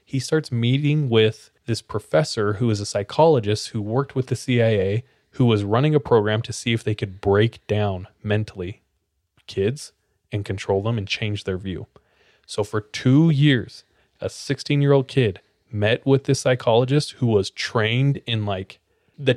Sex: male